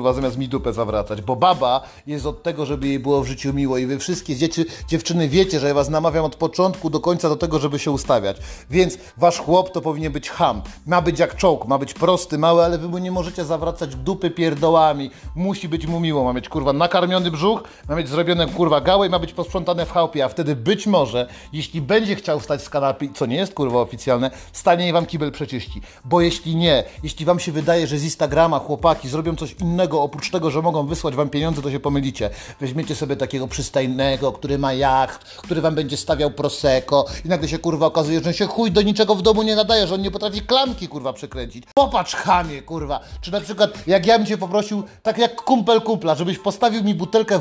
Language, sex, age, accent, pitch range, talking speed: Polish, male, 30-49, native, 140-180 Hz, 220 wpm